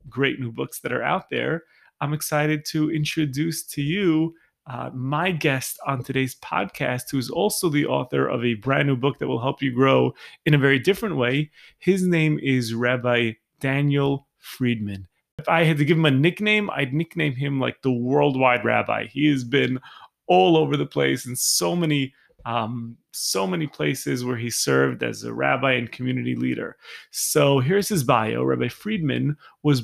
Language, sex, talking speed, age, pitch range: English, male, 180 wpm, 30-49, 125-155 Hz